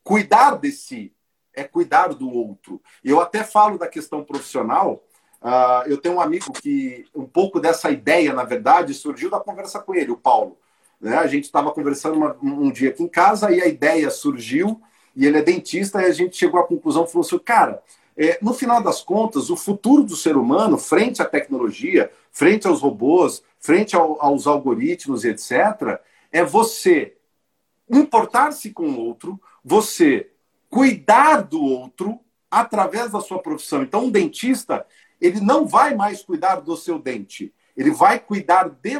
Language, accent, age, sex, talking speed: Portuguese, Brazilian, 50-69, male, 160 wpm